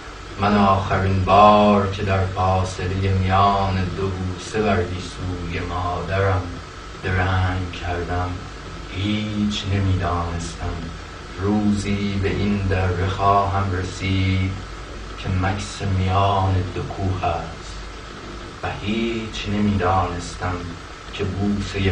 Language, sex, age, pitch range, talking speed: Persian, male, 30-49, 90-115 Hz, 90 wpm